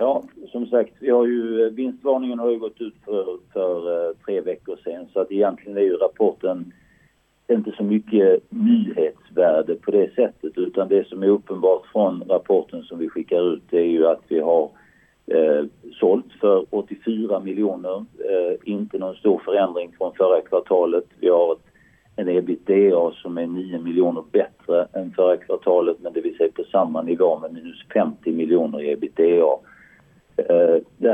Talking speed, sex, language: 165 wpm, male, Swedish